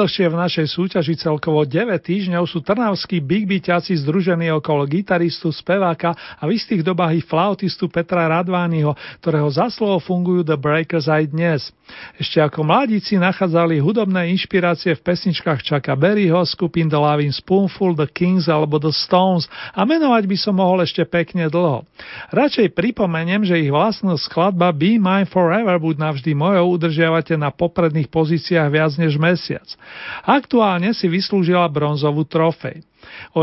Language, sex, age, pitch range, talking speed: Slovak, male, 40-59, 160-190 Hz, 145 wpm